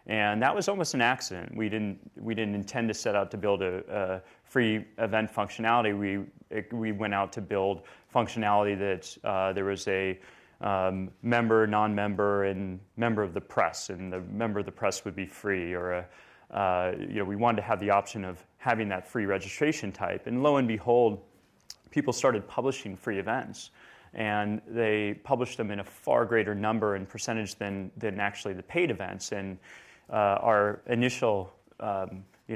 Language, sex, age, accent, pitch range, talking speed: English, male, 30-49, American, 95-115 Hz, 185 wpm